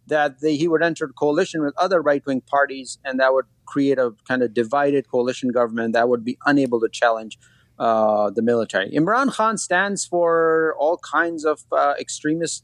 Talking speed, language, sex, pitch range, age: 180 wpm, English, male, 120-140 Hz, 30-49